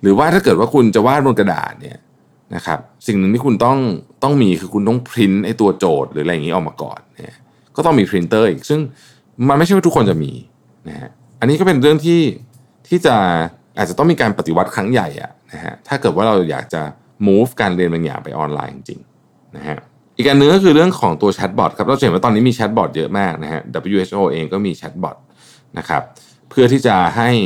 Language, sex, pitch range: Thai, male, 85-130 Hz